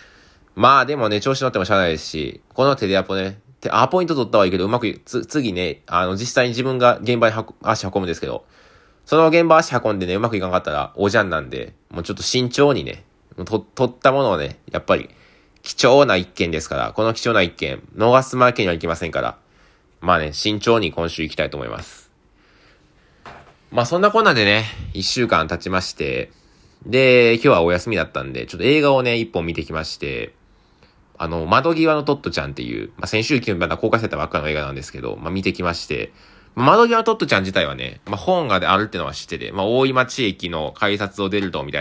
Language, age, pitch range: Japanese, 20-39, 85-125 Hz